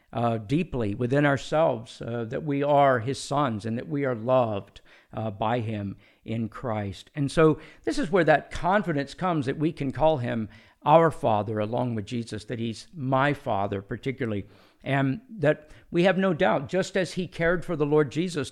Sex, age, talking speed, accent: male, 50-69, 185 wpm, American